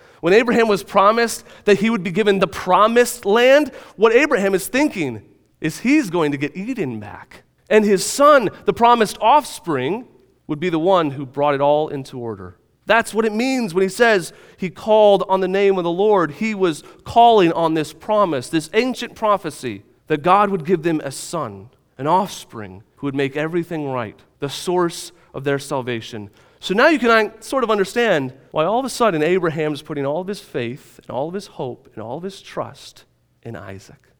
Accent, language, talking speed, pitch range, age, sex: American, English, 200 wpm, 125-195 Hz, 30-49, male